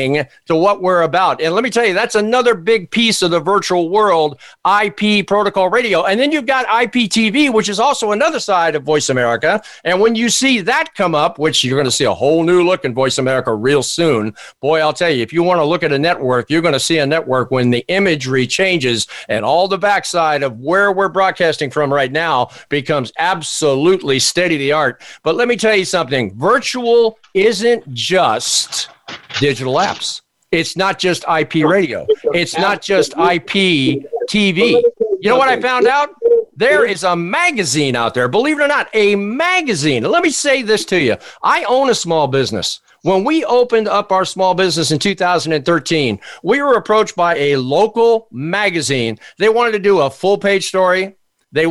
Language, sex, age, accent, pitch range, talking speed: English, male, 50-69, American, 155-220 Hz, 195 wpm